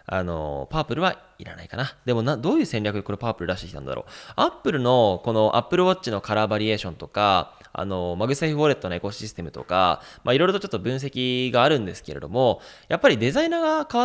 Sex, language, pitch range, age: male, Japanese, 90-125 Hz, 20-39